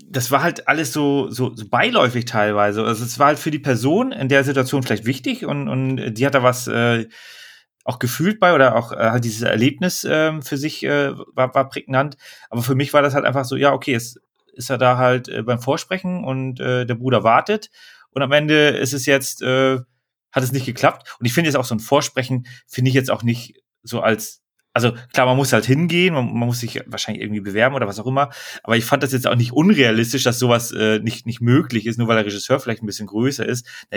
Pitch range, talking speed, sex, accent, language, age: 115-140 Hz, 235 wpm, male, German, German, 30-49